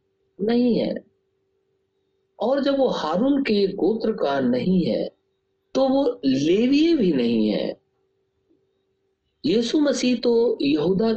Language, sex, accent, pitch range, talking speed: Hindi, male, native, 165-270 Hz, 105 wpm